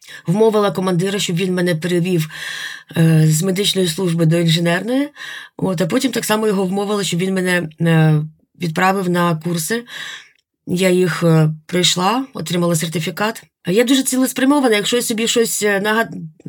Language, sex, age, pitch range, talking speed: Ukrainian, female, 20-39, 175-220 Hz, 130 wpm